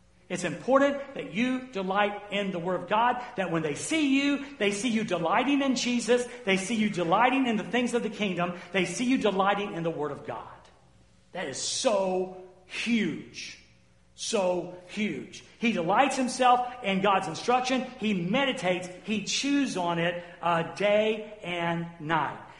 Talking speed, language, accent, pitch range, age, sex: 165 wpm, English, American, 175-245 Hz, 50-69, male